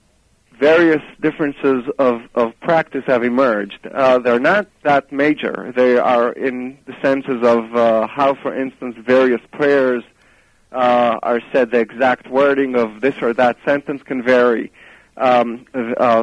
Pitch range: 125-145 Hz